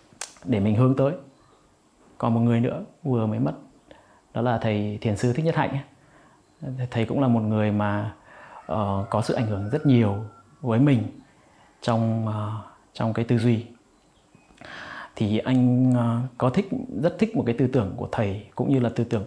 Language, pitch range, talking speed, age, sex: Vietnamese, 105-130 Hz, 170 wpm, 20-39, male